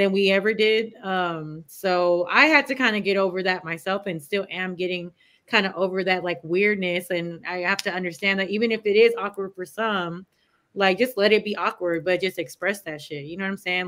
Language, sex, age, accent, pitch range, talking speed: English, female, 20-39, American, 175-220 Hz, 235 wpm